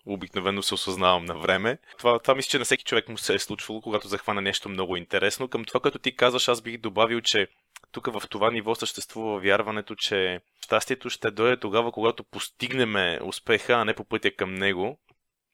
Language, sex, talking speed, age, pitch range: Bulgarian, male, 195 wpm, 20-39, 95-120 Hz